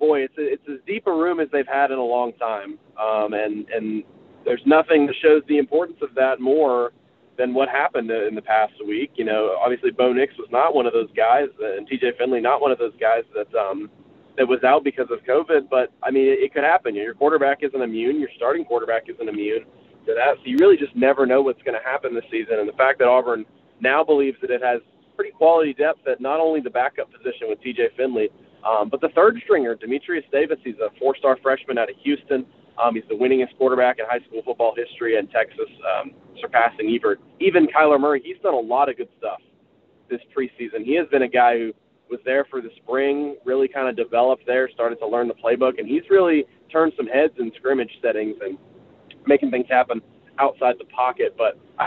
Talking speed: 225 wpm